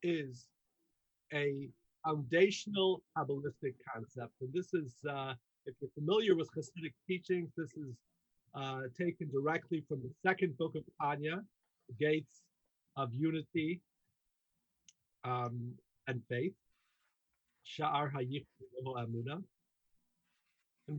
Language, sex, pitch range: English, male, 135-185 Hz